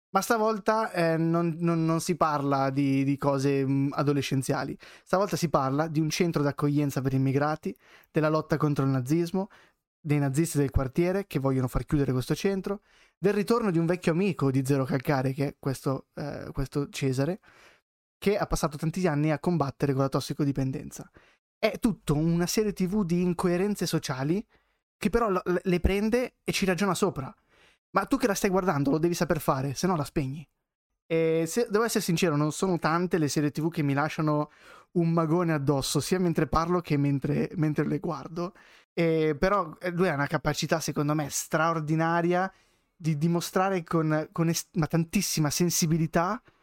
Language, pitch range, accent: Italian, 145-180 Hz, native